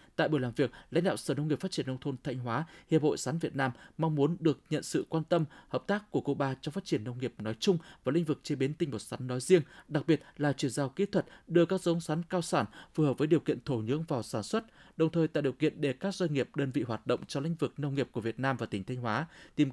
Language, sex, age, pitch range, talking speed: Vietnamese, male, 20-39, 135-170 Hz, 295 wpm